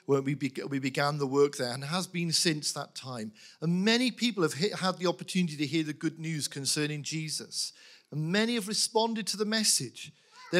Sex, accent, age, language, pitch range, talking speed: male, British, 40-59, English, 175-235 Hz, 190 wpm